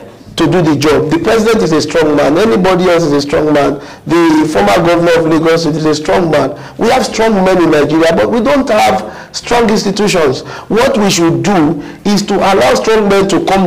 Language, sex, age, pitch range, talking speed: English, male, 50-69, 155-205 Hz, 210 wpm